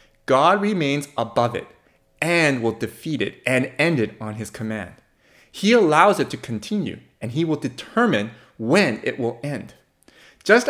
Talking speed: 155 wpm